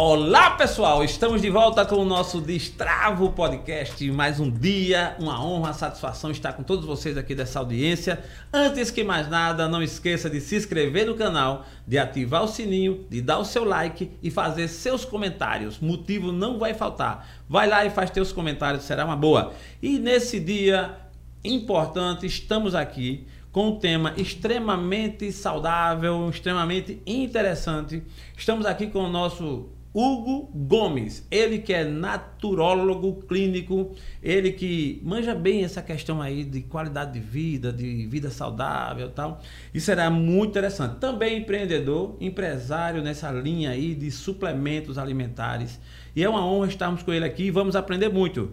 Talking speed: 155 wpm